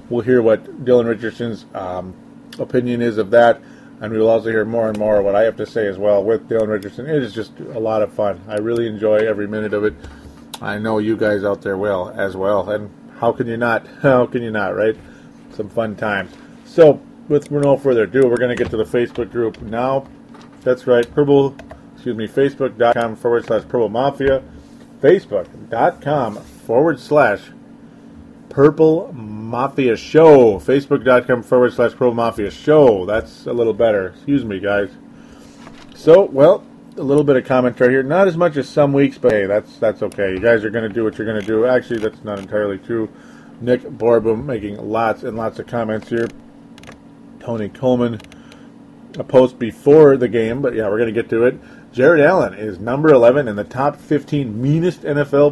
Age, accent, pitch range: 40-59, American, 110-135 Hz